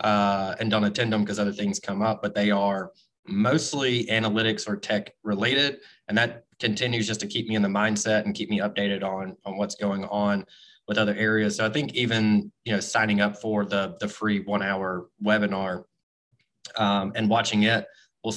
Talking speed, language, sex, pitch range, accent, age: 195 wpm, English, male, 100-110 Hz, American, 20-39